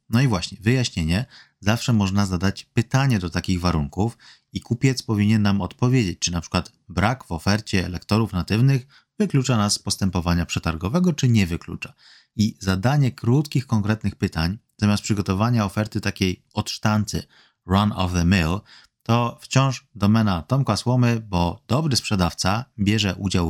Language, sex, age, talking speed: Polish, male, 30-49, 145 wpm